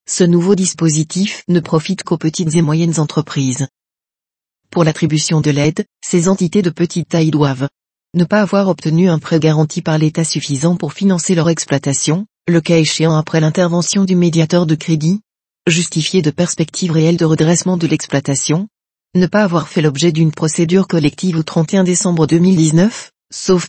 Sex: female